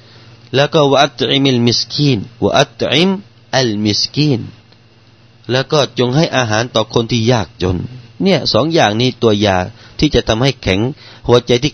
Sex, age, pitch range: male, 30-49, 105-120 Hz